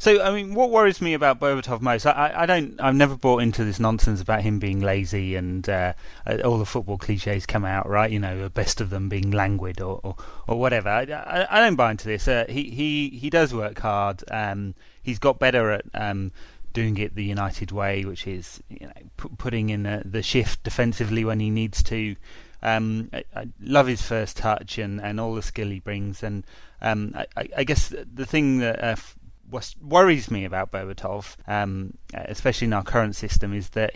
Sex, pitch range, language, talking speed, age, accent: male, 100-125 Hz, English, 210 wpm, 30-49, British